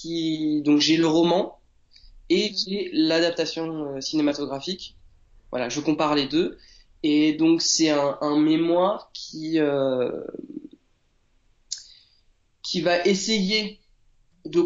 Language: French